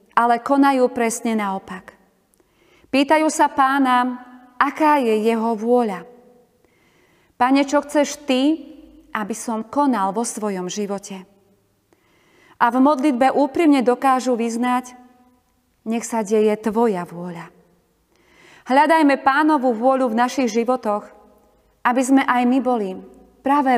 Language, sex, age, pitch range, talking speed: Slovak, female, 30-49, 215-265 Hz, 110 wpm